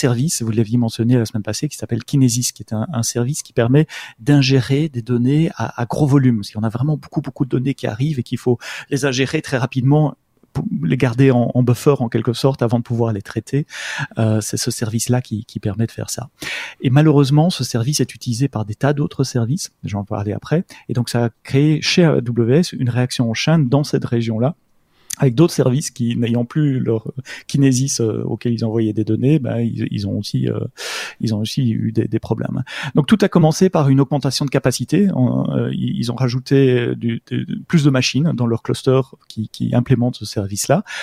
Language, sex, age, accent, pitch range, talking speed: French, male, 30-49, French, 115-140 Hz, 220 wpm